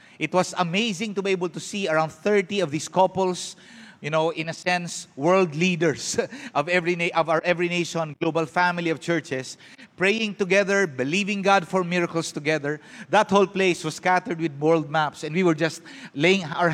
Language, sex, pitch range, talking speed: English, male, 160-190 Hz, 185 wpm